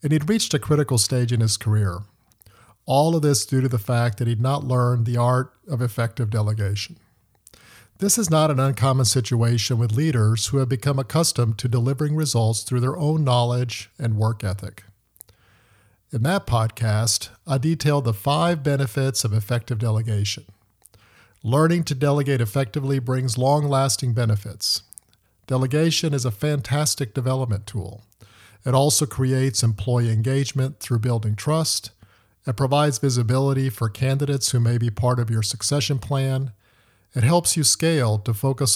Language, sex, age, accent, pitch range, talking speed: English, male, 50-69, American, 110-135 Hz, 150 wpm